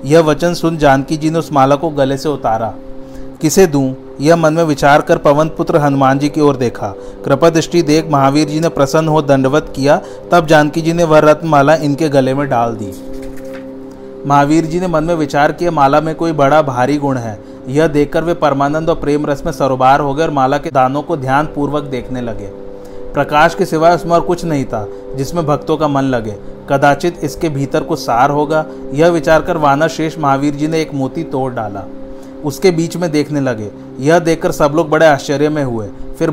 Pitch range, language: 135-160 Hz, Hindi